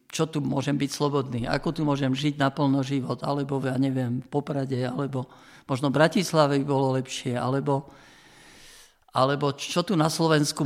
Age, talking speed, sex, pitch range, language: 50-69, 160 wpm, male, 135-160 Hz, Slovak